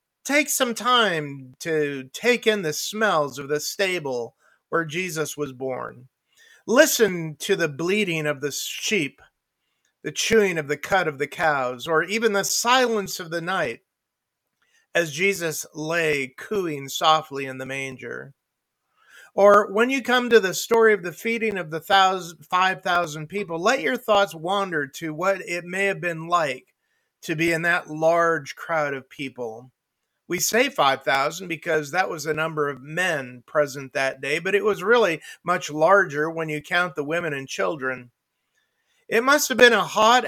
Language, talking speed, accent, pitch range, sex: English, 165 wpm, American, 155-215 Hz, male